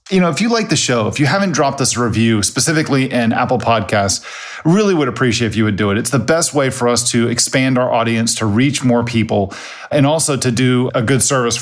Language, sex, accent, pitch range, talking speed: English, male, American, 115-150 Hz, 240 wpm